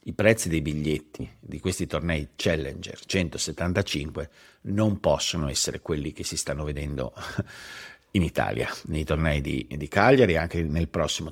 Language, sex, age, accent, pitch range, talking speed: Italian, male, 50-69, native, 85-110 Hz, 150 wpm